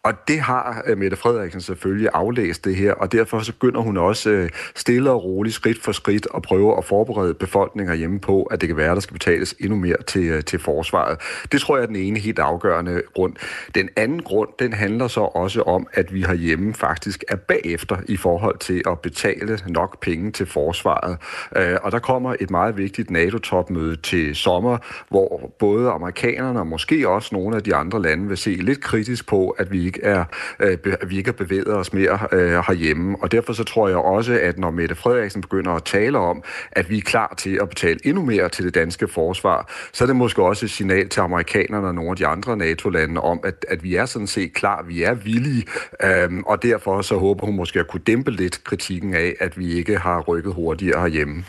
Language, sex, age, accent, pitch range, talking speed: Danish, male, 40-59, native, 90-110 Hz, 210 wpm